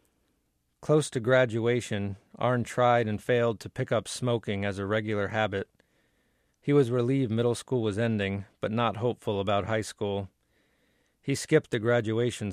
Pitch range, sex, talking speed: 105-120 Hz, male, 155 wpm